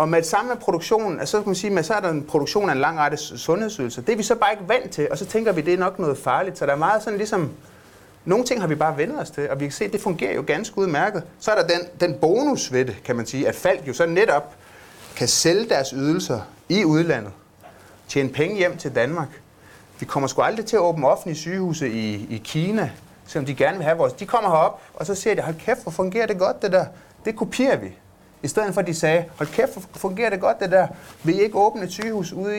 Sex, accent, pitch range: male, native, 140-205 Hz